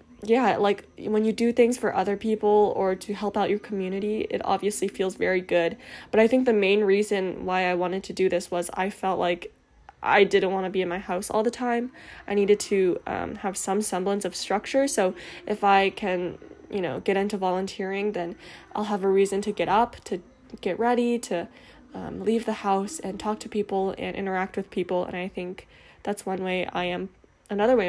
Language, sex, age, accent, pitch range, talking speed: English, female, 10-29, American, 190-225 Hz, 215 wpm